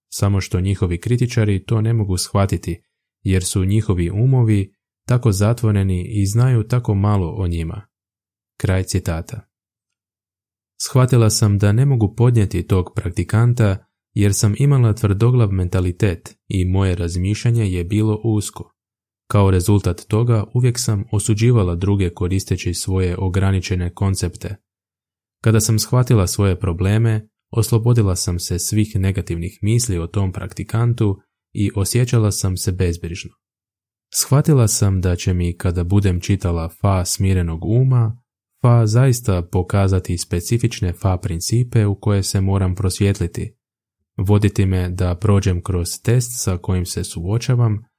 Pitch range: 95-110 Hz